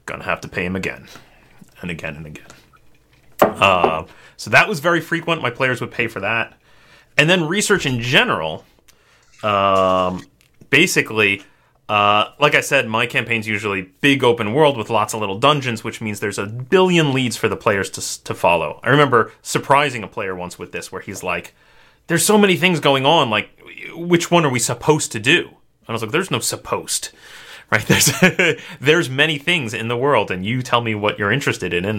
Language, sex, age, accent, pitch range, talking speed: English, male, 30-49, American, 100-140 Hz, 195 wpm